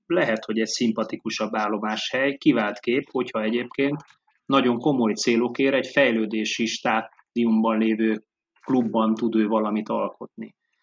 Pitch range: 110-130 Hz